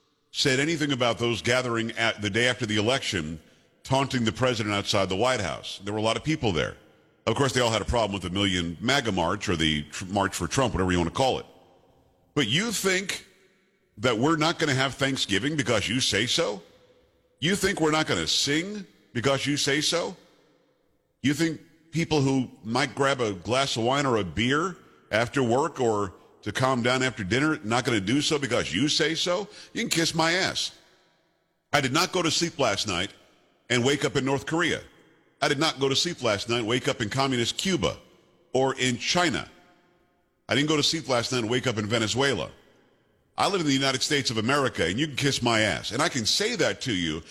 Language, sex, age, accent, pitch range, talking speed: English, male, 50-69, American, 115-155 Hz, 220 wpm